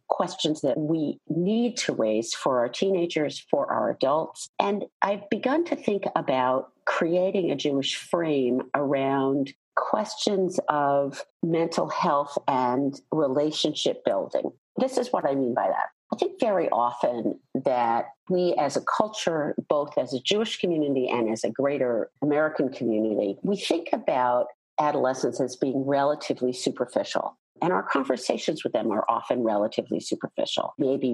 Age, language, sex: 50-69, English, female